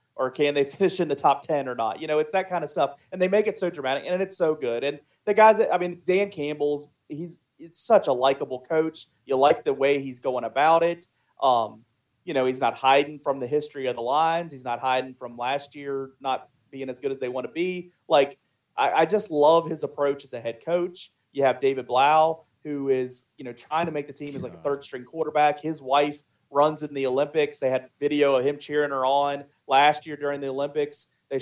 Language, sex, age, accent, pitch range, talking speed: English, male, 30-49, American, 130-160 Hz, 240 wpm